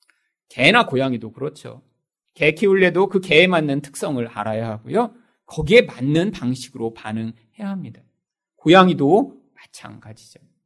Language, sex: Korean, male